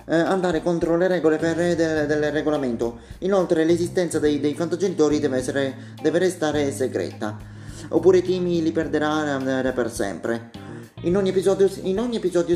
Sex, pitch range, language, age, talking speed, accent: male, 135-170 Hz, Italian, 30-49, 150 wpm, native